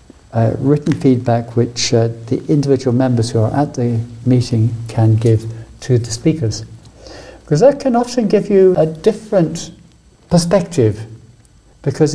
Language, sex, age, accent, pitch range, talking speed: English, male, 60-79, British, 115-150 Hz, 140 wpm